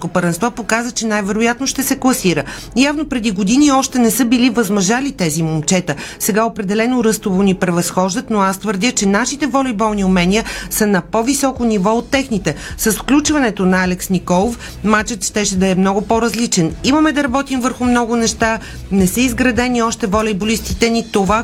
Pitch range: 190-235 Hz